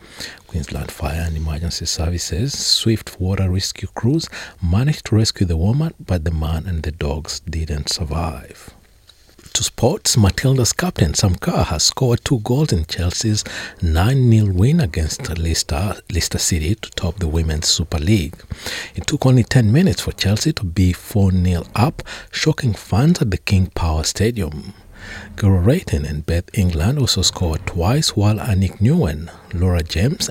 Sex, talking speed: male, 150 wpm